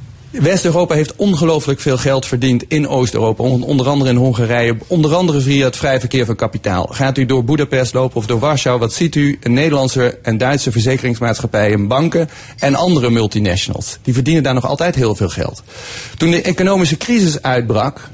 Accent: Dutch